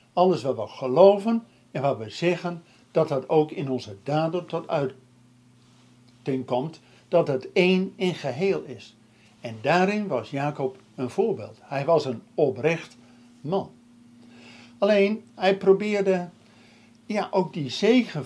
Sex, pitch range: male, 125-185 Hz